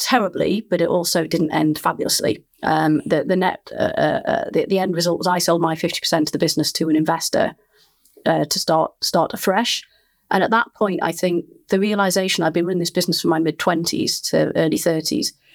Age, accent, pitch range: 30-49, British, 170-195 Hz